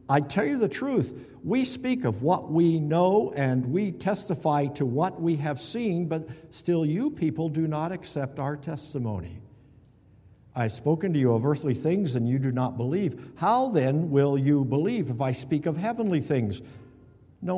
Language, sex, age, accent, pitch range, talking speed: English, male, 60-79, American, 115-160 Hz, 180 wpm